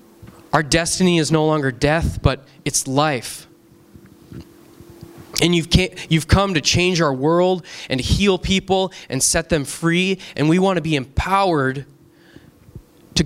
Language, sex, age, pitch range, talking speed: English, male, 20-39, 150-180 Hz, 145 wpm